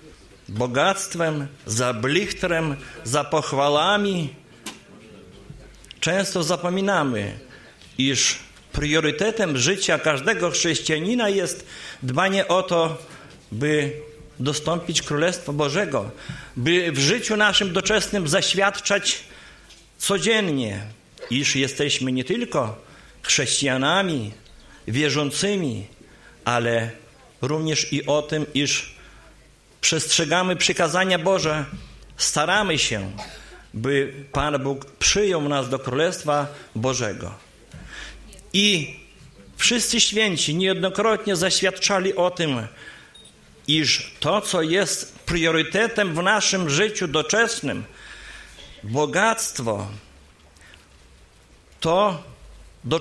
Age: 50-69